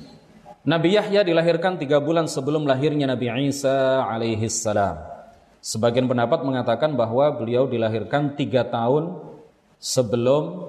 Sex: male